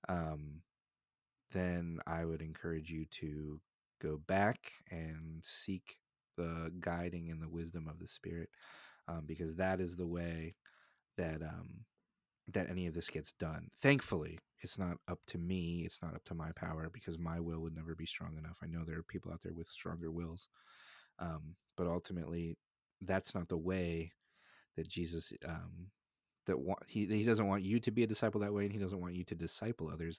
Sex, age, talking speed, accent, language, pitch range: male, 30-49, 185 wpm, American, English, 80-95 Hz